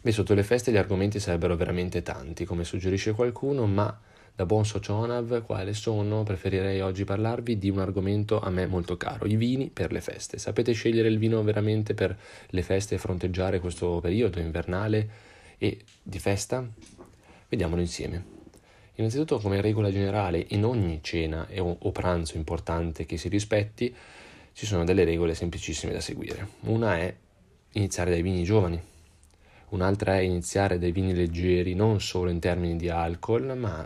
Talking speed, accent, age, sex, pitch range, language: 160 wpm, native, 20-39, male, 85-105 Hz, Italian